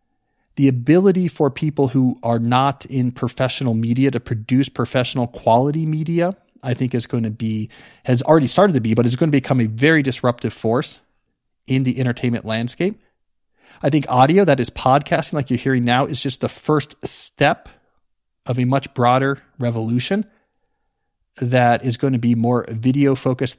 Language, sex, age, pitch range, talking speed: English, male, 40-59, 115-140 Hz, 170 wpm